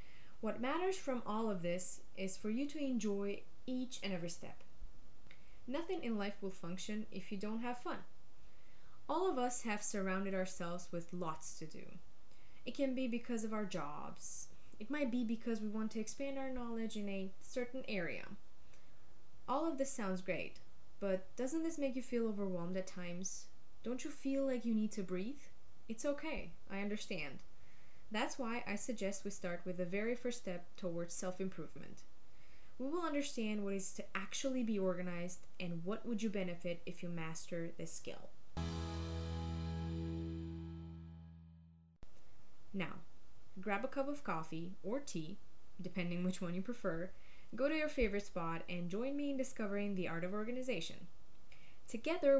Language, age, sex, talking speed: English, 20-39, female, 165 wpm